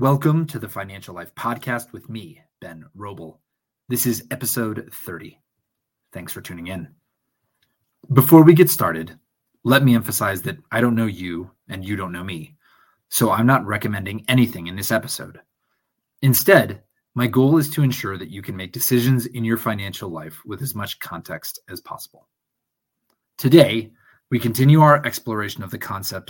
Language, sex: English, male